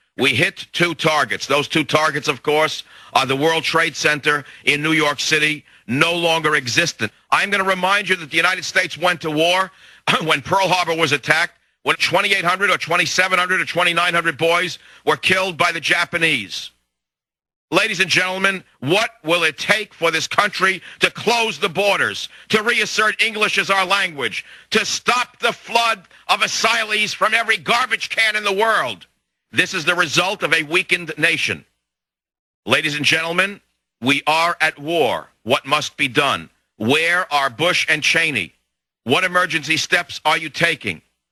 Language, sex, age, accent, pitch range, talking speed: English, male, 50-69, American, 145-185 Hz, 165 wpm